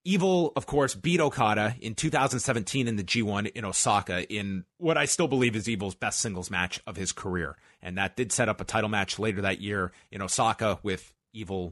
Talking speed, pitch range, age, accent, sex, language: 205 wpm, 105-145 Hz, 30-49, American, male, English